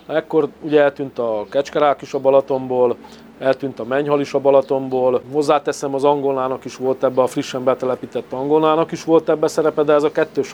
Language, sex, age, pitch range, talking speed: Hungarian, male, 40-59, 135-160 Hz, 180 wpm